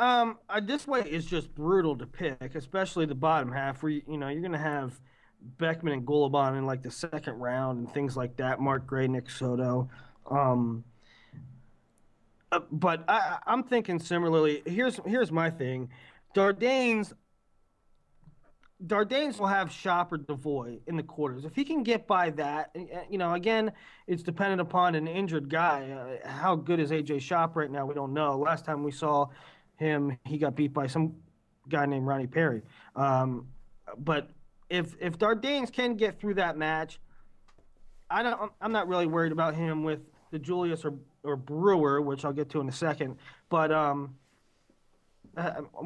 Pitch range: 140-180 Hz